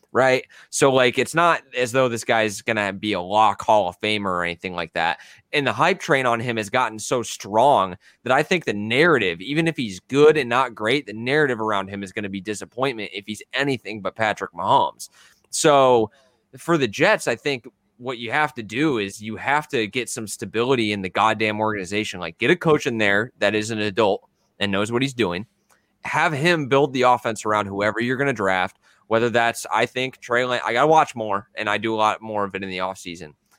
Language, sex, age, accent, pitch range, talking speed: English, male, 20-39, American, 100-125 Hz, 230 wpm